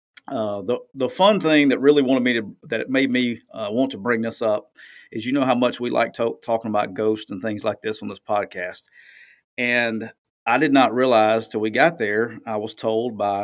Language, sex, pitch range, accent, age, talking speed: English, male, 110-130 Hz, American, 40-59, 230 wpm